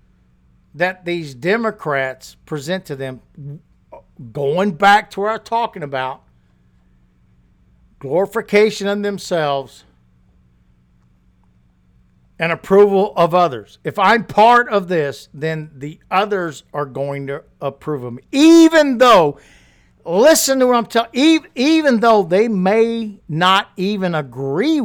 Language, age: English, 60-79